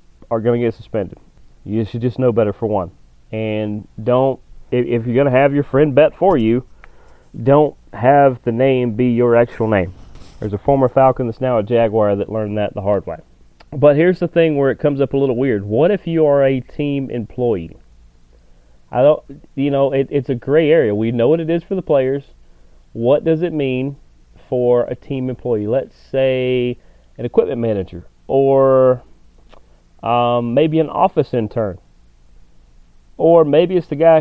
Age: 30-49